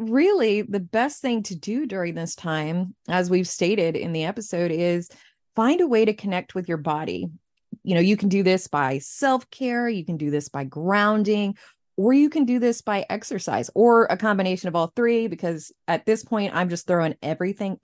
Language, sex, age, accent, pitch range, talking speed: English, female, 20-39, American, 165-225 Hz, 200 wpm